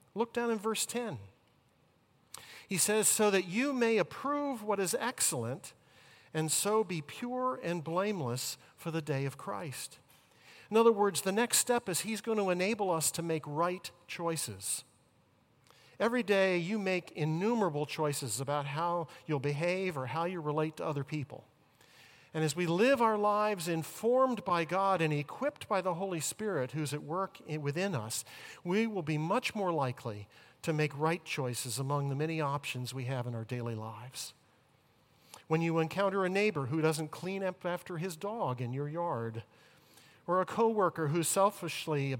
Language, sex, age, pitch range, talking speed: English, male, 50-69, 140-195 Hz, 170 wpm